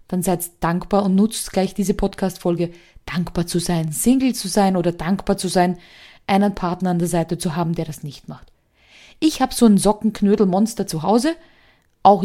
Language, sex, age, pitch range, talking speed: German, female, 20-39, 175-230 Hz, 180 wpm